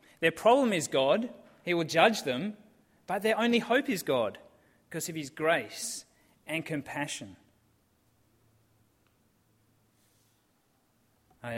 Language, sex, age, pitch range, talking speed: English, male, 30-49, 115-165 Hz, 110 wpm